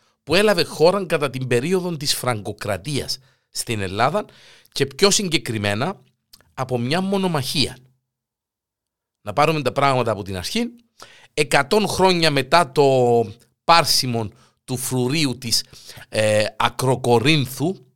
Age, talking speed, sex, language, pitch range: 50-69, 105 wpm, male, Greek, 115-155 Hz